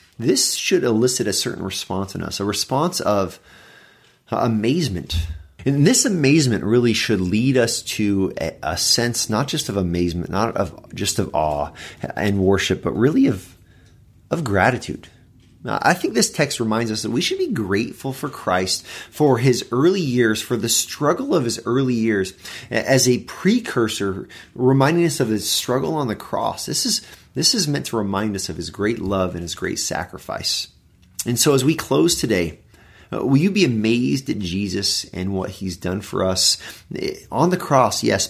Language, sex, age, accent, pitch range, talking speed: English, male, 30-49, American, 95-130 Hz, 175 wpm